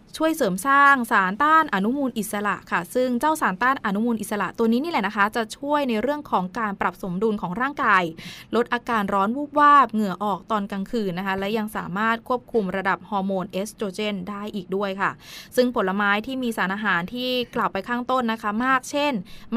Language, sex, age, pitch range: Thai, female, 20-39, 195-245 Hz